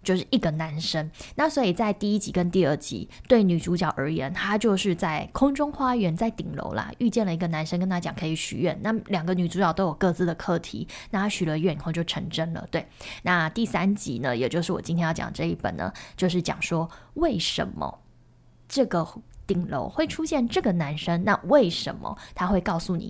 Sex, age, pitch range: female, 20-39, 170-245 Hz